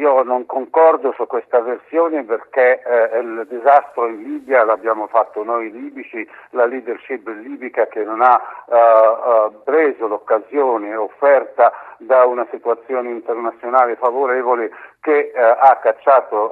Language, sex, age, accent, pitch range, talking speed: Italian, male, 60-79, native, 115-145 Hz, 120 wpm